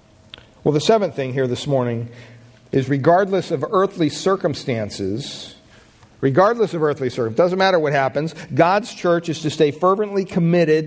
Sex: male